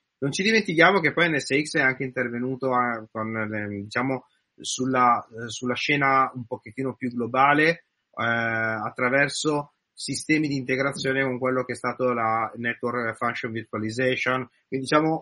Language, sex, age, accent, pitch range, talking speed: Italian, male, 30-49, native, 120-150 Hz, 130 wpm